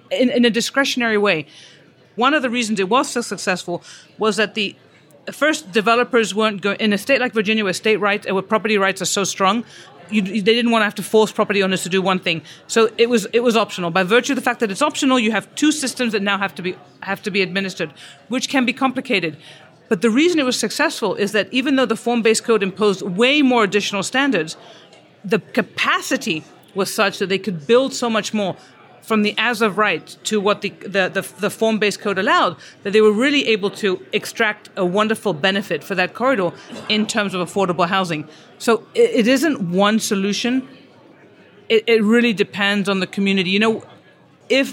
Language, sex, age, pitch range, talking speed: English, female, 40-59, 195-235 Hz, 210 wpm